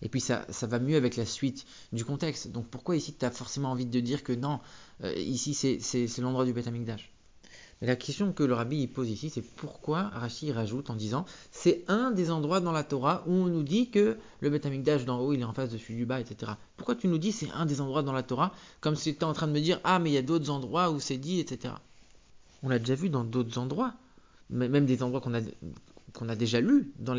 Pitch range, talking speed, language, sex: 125-170 Hz, 265 wpm, English, male